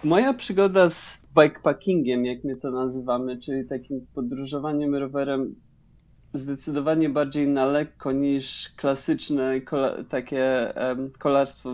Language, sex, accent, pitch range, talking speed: Polish, male, native, 135-180 Hz, 100 wpm